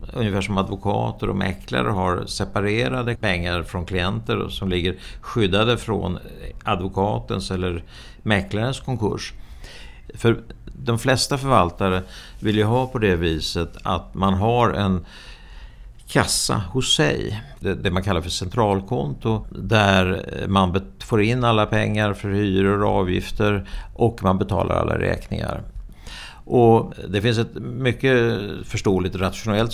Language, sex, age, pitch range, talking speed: Swedish, male, 60-79, 95-110 Hz, 125 wpm